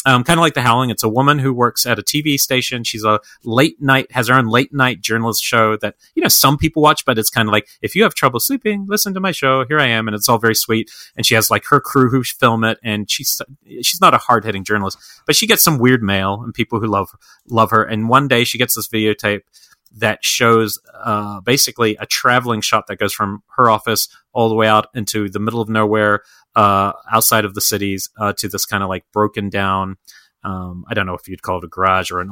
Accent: American